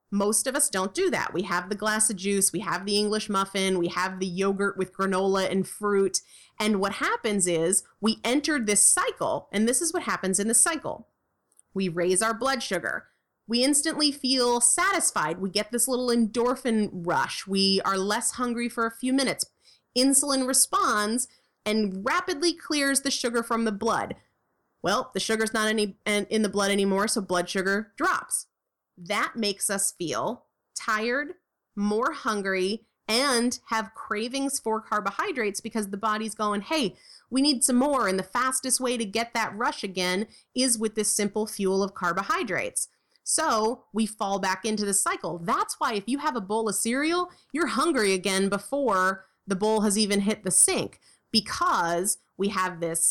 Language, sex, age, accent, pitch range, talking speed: English, female, 30-49, American, 195-255 Hz, 175 wpm